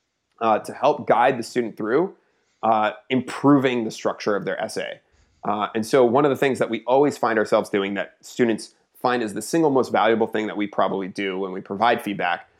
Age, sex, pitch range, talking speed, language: 30-49, male, 105-130 Hz, 210 wpm, English